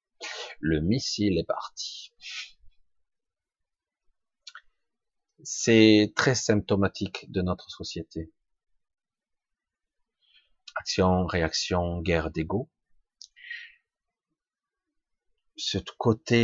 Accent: French